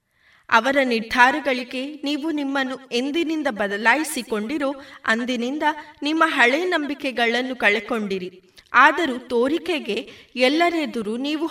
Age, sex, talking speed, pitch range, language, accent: 20-39, female, 80 wpm, 225-310 Hz, Kannada, native